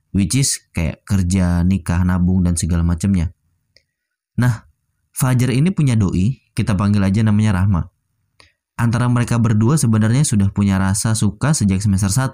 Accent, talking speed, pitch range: native, 140 wpm, 95-115 Hz